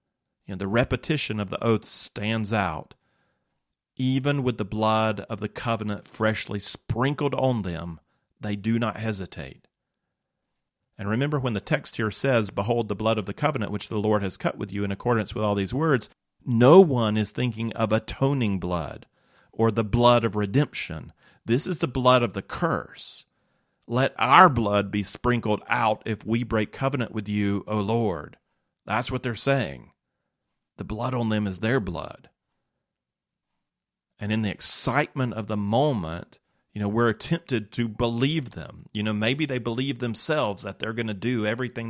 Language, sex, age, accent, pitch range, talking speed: English, male, 40-59, American, 100-120 Hz, 170 wpm